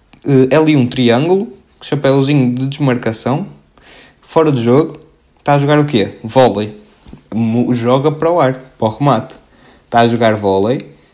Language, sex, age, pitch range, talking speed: Portuguese, male, 20-39, 120-160 Hz, 150 wpm